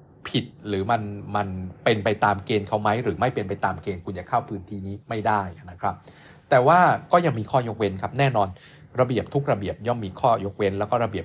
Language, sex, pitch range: Thai, male, 100-135 Hz